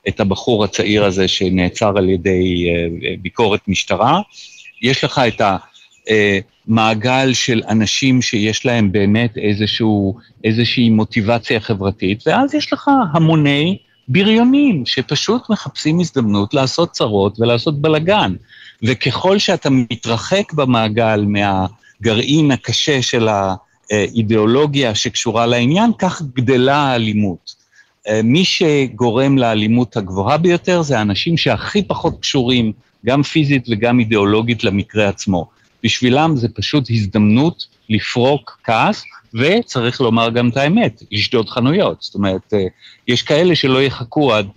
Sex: male